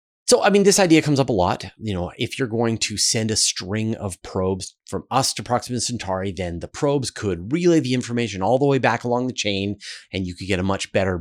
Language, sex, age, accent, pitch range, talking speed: English, male, 30-49, American, 90-115 Hz, 245 wpm